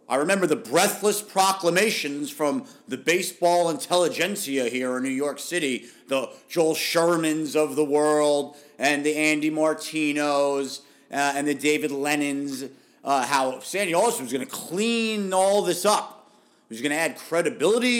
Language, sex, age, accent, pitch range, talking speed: English, male, 40-59, American, 125-175 Hz, 155 wpm